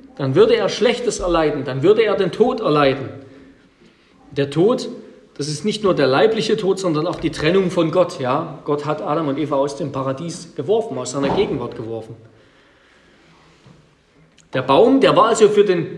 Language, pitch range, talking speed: German, 150-225 Hz, 175 wpm